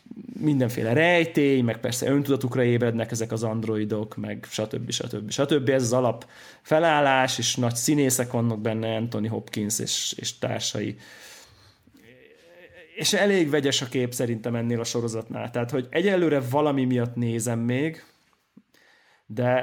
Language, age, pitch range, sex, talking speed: Hungarian, 20-39, 120-145 Hz, male, 130 wpm